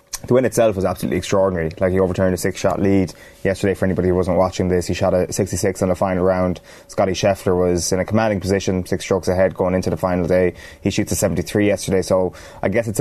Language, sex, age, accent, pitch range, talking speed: English, male, 20-39, Irish, 90-95 Hz, 235 wpm